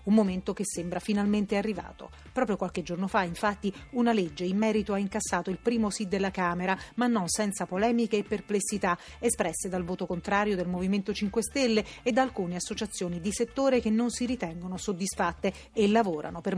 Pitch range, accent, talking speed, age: 185-220 Hz, native, 180 wpm, 40-59